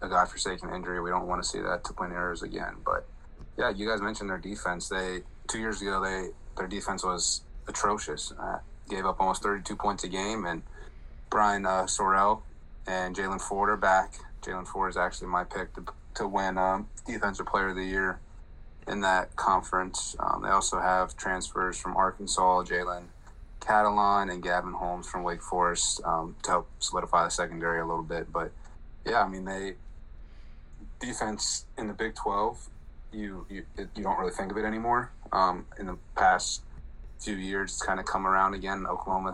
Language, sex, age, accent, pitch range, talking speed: English, male, 30-49, American, 90-100 Hz, 185 wpm